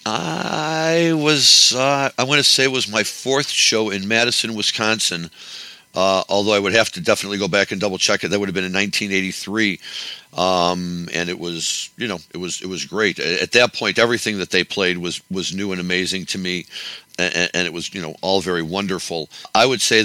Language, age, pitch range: English, 50-69, 85-105 Hz